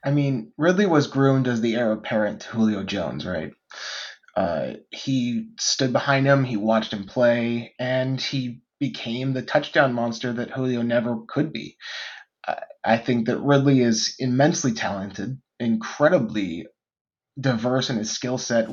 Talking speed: 145 wpm